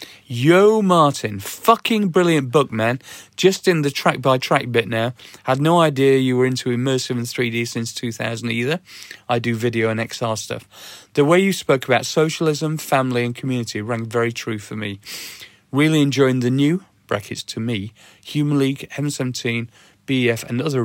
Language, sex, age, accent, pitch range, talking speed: English, male, 40-59, British, 120-170 Hz, 170 wpm